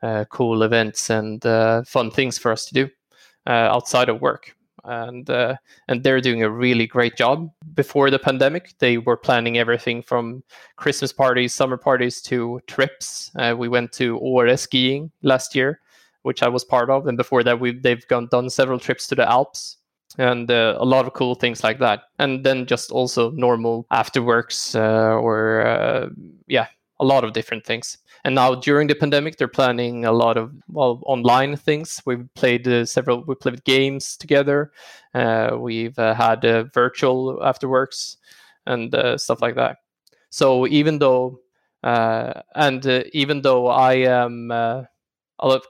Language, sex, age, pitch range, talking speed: English, male, 20-39, 120-135 Hz, 170 wpm